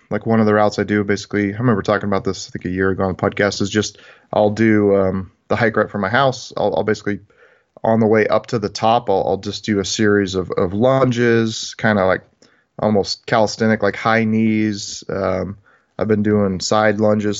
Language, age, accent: English, 20-39, American